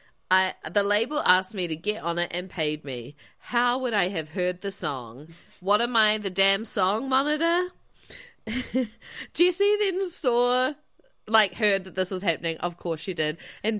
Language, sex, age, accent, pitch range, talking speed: English, female, 20-39, Australian, 170-240 Hz, 175 wpm